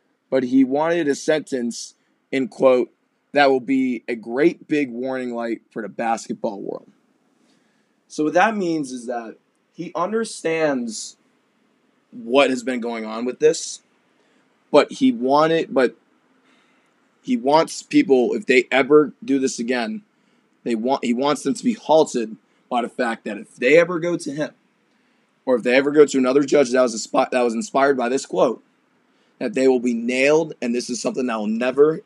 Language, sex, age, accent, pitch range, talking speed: English, male, 20-39, American, 125-170 Hz, 180 wpm